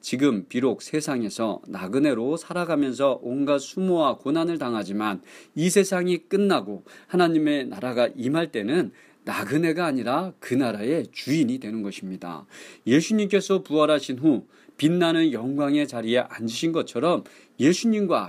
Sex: male